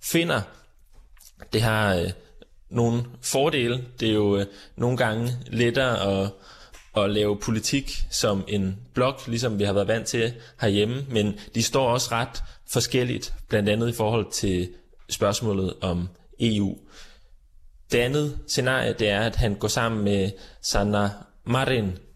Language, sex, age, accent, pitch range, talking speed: Danish, male, 20-39, native, 95-120 Hz, 140 wpm